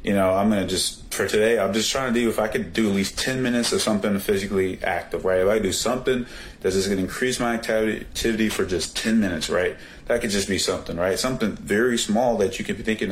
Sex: male